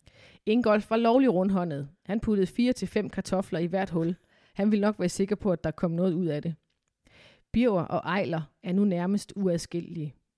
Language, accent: Danish, native